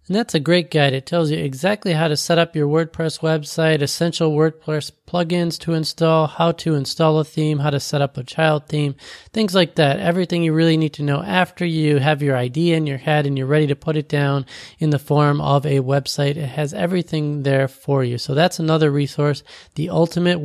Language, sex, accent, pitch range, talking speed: English, male, American, 140-165 Hz, 220 wpm